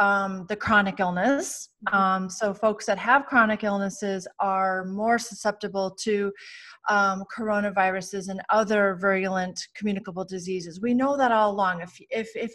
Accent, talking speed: American, 145 wpm